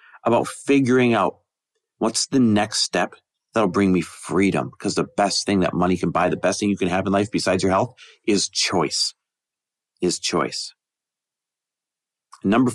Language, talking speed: English, 165 wpm